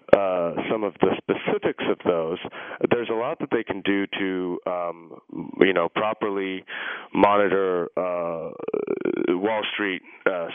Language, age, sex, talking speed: English, 30-49, male, 135 wpm